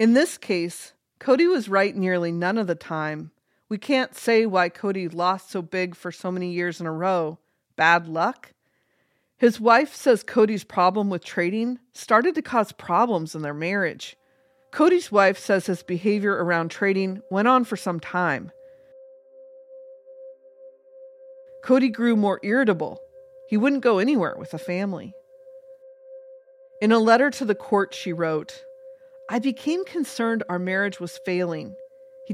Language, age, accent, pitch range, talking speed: English, 40-59, American, 180-265 Hz, 150 wpm